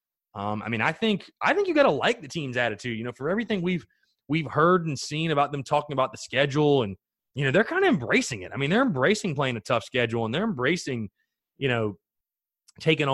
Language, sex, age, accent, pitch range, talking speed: English, male, 30-49, American, 115-150 Hz, 230 wpm